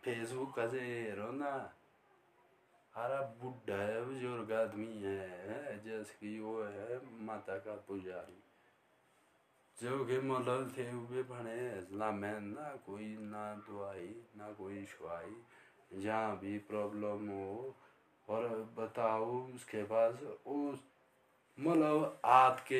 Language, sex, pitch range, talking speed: Hindi, male, 105-125 Hz, 110 wpm